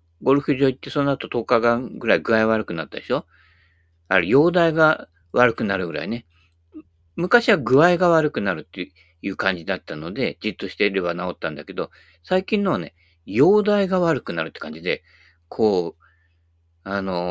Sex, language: male, Japanese